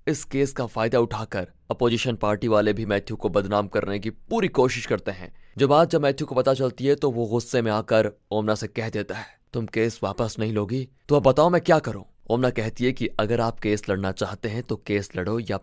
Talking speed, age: 235 wpm, 20-39